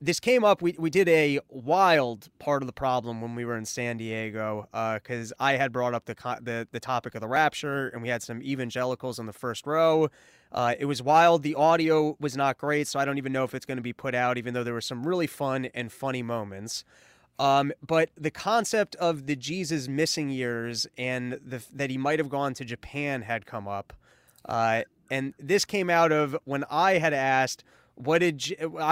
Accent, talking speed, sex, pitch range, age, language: American, 210 wpm, male, 125-155 Hz, 20-39, English